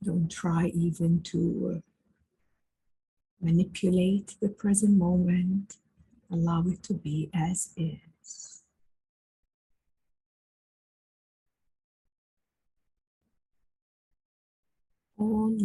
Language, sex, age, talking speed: English, female, 50-69, 60 wpm